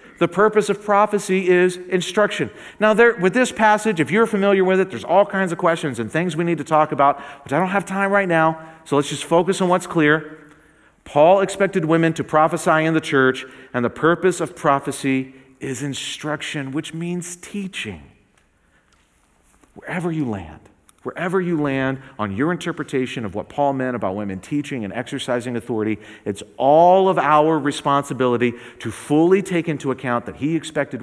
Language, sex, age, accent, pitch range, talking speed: English, male, 40-59, American, 130-165 Hz, 175 wpm